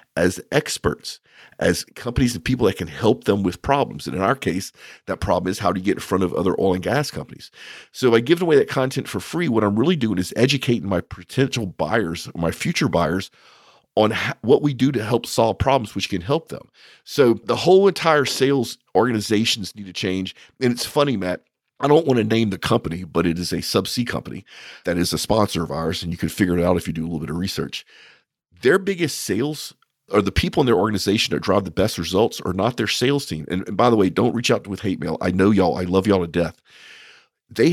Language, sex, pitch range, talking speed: English, male, 90-125 Hz, 235 wpm